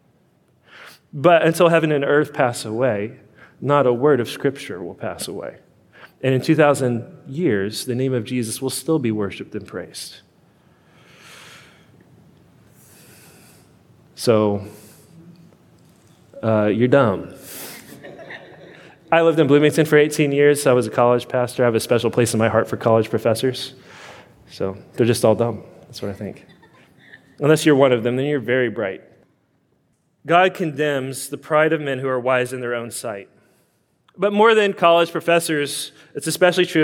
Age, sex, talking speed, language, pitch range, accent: 30-49, male, 155 wpm, English, 120-160 Hz, American